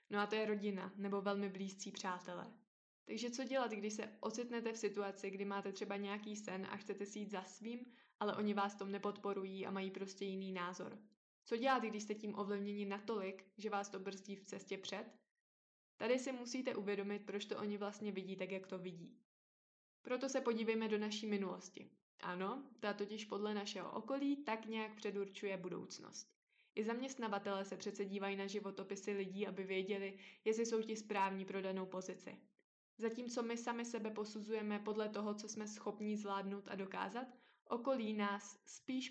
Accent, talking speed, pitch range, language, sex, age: native, 175 wpm, 200-225 Hz, Czech, female, 20-39